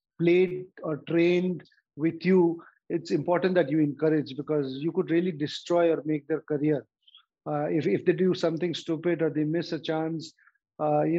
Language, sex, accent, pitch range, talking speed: English, male, Indian, 155-175 Hz, 175 wpm